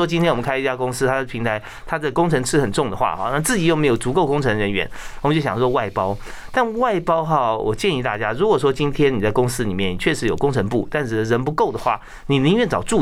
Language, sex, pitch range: Chinese, male, 120-155 Hz